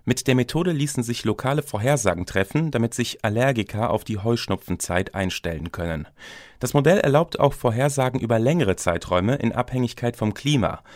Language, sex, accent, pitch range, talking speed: German, male, German, 100-140 Hz, 155 wpm